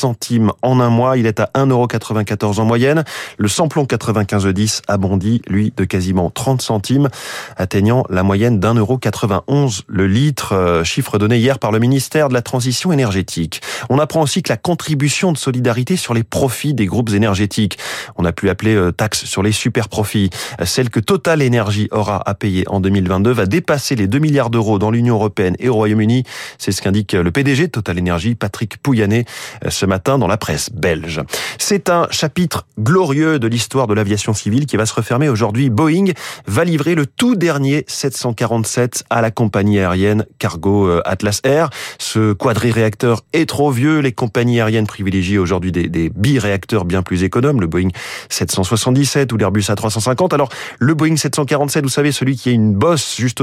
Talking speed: 185 wpm